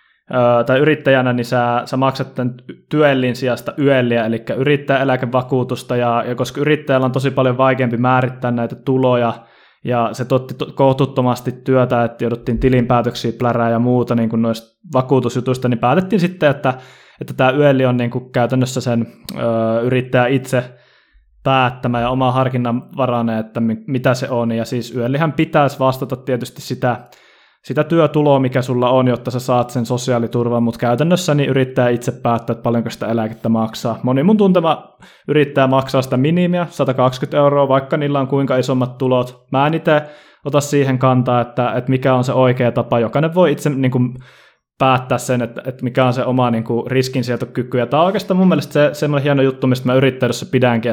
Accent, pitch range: native, 120-140 Hz